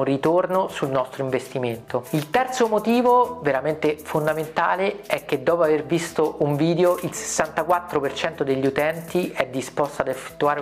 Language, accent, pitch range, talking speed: Italian, native, 135-170 Hz, 135 wpm